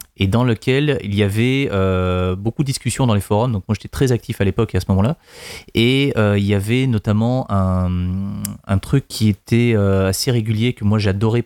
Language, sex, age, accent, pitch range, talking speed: French, male, 30-49, French, 100-120 Hz, 215 wpm